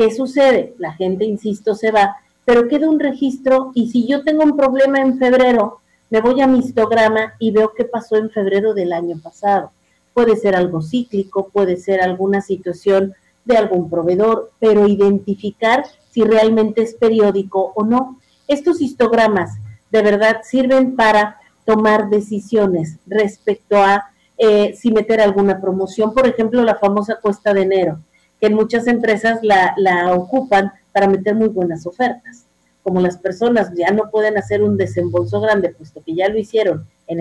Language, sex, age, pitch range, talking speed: Spanish, female, 50-69, 195-230 Hz, 165 wpm